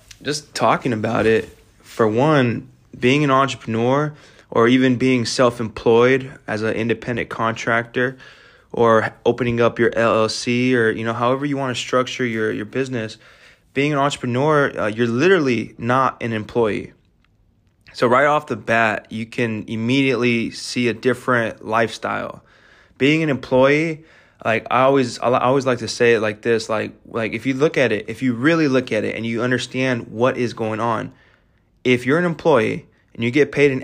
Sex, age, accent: male, 20-39, American